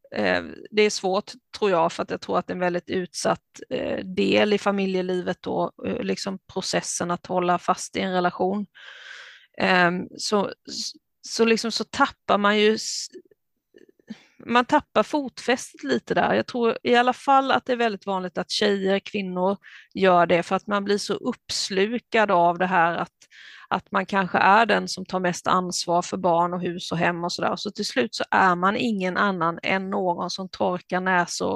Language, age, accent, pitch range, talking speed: Swedish, 30-49, native, 180-220 Hz, 180 wpm